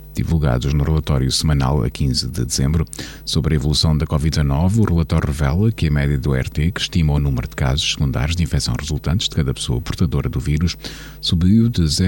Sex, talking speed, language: male, 195 wpm, Portuguese